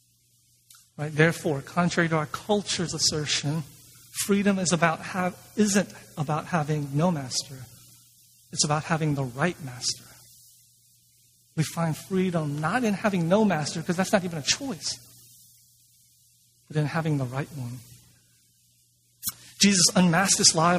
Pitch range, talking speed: 120-195 Hz, 135 wpm